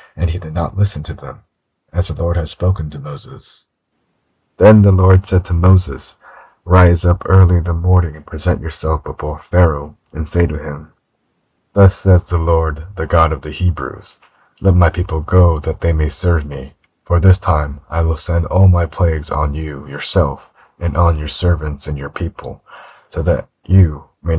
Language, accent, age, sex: English, American, 30-49, male